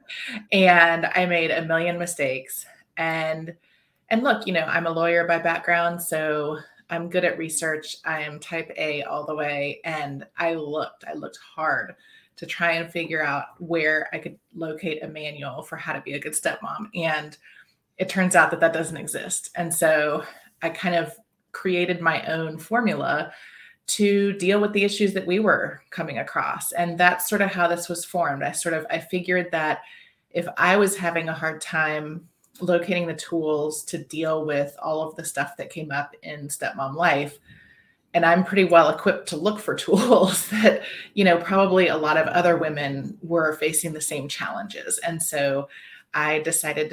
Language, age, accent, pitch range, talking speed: English, 30-49, American, 155-175 Hz, 185 wpm